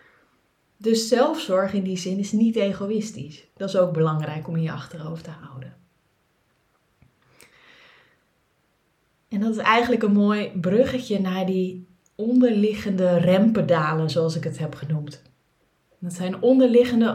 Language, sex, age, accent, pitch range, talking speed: Dutch, female, 20-39, Dutch, 170-225 Hz, 130 wpm